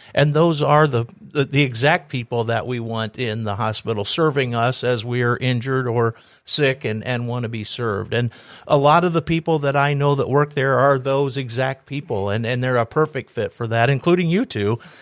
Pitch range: 120-145 Hz